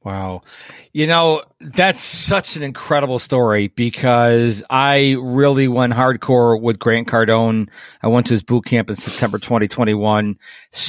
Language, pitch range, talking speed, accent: English, 120-155 Hz, 140 wpm, American